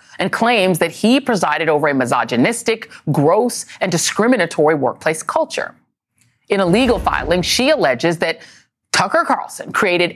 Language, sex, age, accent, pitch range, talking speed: English, female, 30-49, American, 165-240 Hz, 135 wpm